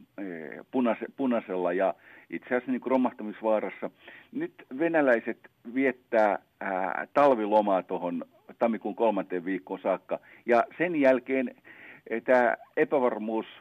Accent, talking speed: native, 95 wpm